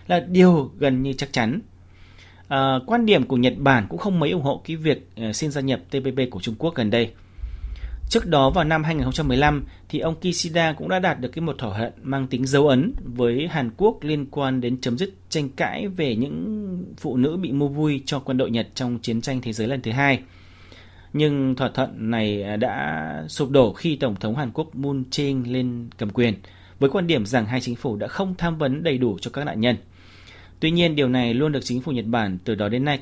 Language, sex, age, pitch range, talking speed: Vietnamese, male, 30-49, 115-150 Hz, 225 wpm